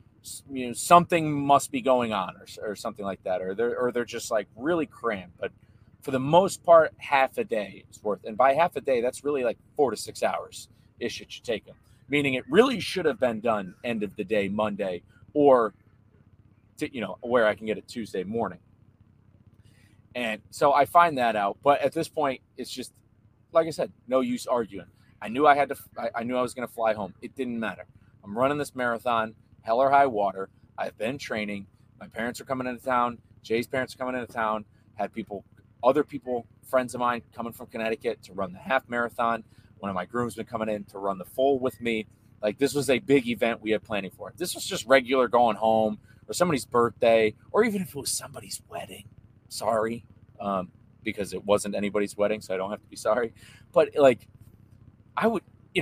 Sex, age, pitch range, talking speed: male, 30-49, 110-130 Hz, 215 wpm